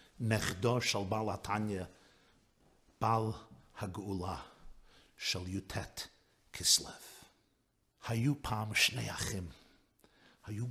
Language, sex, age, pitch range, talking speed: Hebrew, male, 50-69, 100-130 Hz, 80 wpm